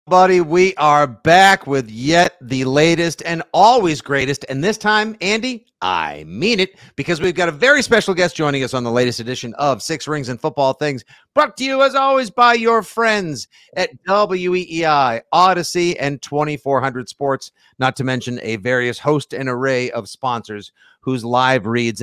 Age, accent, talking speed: 50-69, American, 175 wpm